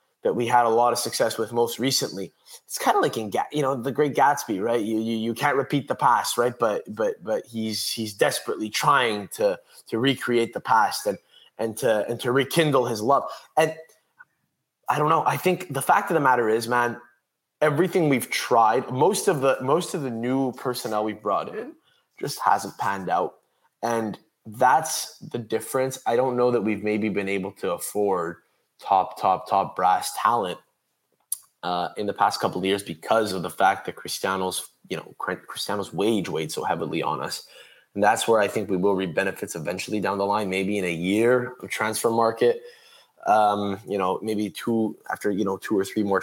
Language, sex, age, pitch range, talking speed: English, male, 20-39, 105-140 Hz, 200 wpm